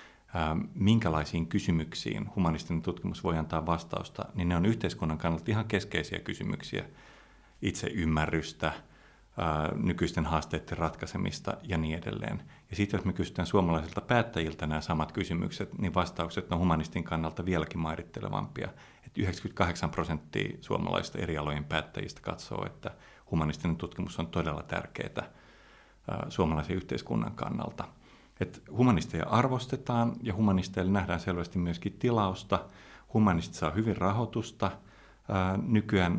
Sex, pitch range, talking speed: male, 80-100 Hz, 115 wpm